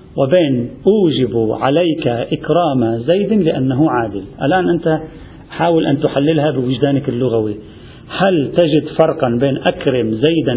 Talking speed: 115 wpm